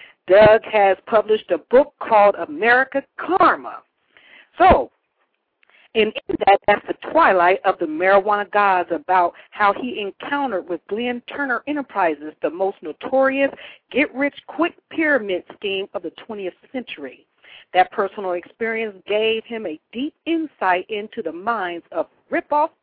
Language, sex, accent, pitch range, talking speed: English, female, American, 200-275 Hz, 130 wpm